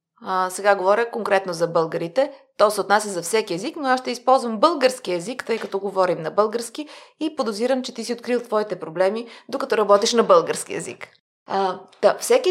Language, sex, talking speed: Bulgarian, female, 180 wpm